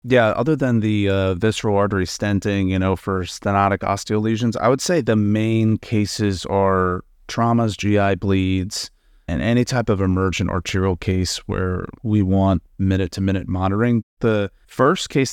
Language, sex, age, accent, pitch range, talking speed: English, male, 30-49, American, 95-110 Hz, 150 wpm